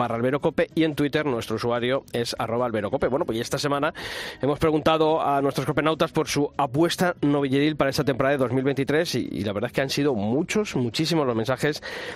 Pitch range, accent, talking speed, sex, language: 125-155 Hz, Spanish, 190 wpm, male, Spanish